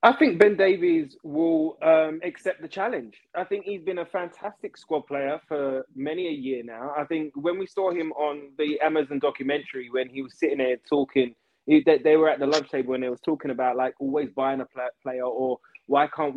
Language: English